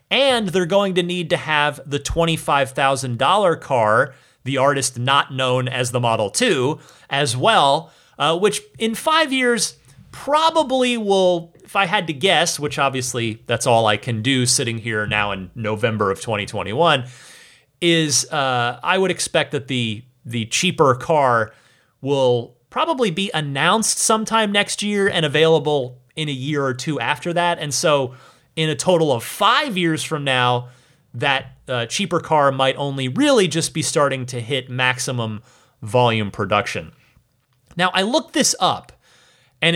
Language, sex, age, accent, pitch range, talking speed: English, male, 30-49, American, 125-185 Hz, 155 wpm